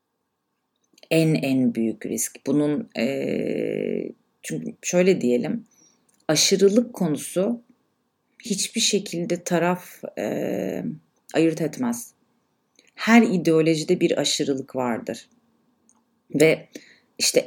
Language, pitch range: Turkish, 165-235 Hz